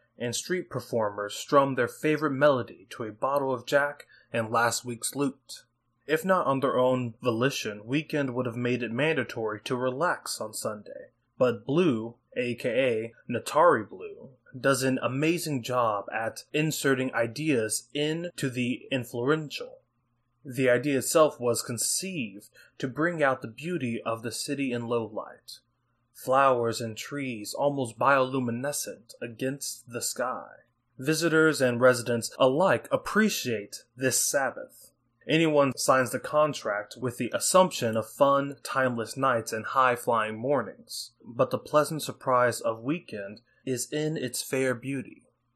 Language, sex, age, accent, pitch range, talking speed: English, male, 20-39, American, 120-145 Hz, 135 wpm